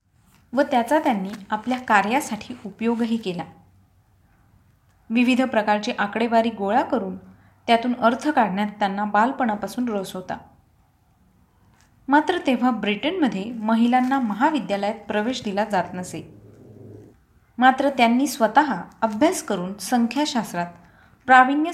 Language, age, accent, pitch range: Marathi, 20-39, native, 200-260 Hz